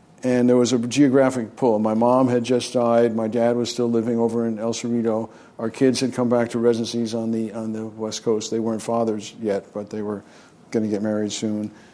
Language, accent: English, American